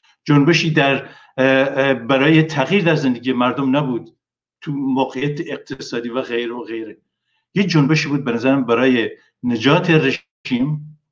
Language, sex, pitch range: Persian, male, 130-150 Hz